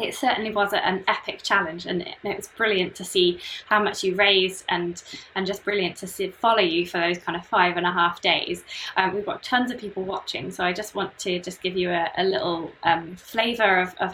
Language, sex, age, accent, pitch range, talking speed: English, female, 20-39, British, 180-220 Hz, 235 wpm